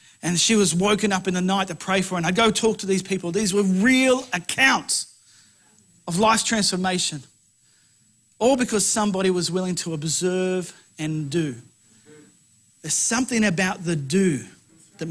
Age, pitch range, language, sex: 40-59, 180-225 Hz, English, male